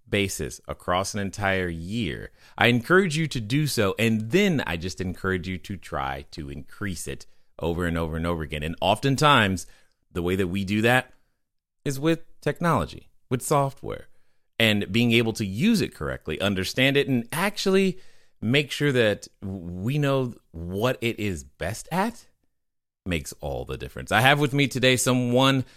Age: 30-49